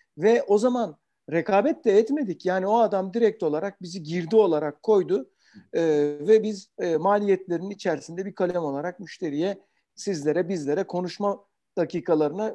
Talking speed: 140 wpm